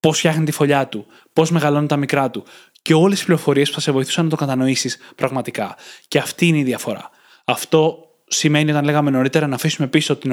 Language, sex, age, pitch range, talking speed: Greek, male, 20-39, 130-165 Hz, 210 wpm